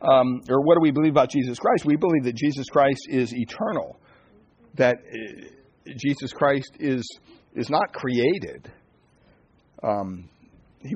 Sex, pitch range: male, 120-155 Hz